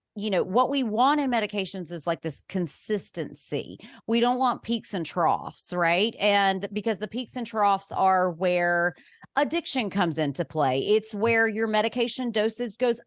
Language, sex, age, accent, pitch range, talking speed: English, female, 30-49, American, 185-240 Hz, 165 wpm